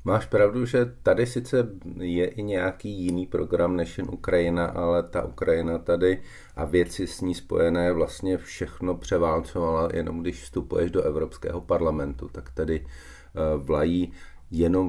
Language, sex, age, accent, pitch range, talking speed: Czech, male, 40-59, native, 80-90 Hz, 140 wpm